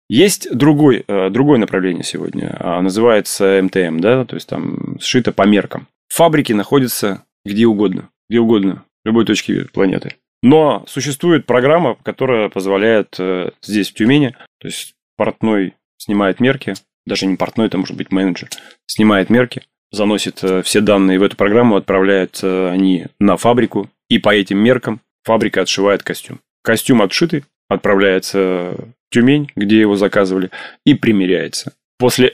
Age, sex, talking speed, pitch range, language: 20-39, male, 135 wpm, 95-120 Hz, Russian